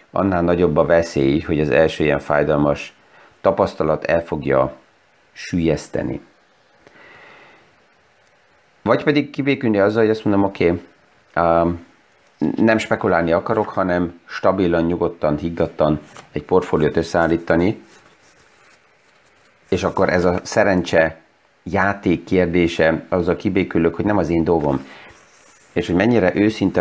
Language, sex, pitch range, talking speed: Hungarian, male, 80-110 Hz, 110 wpm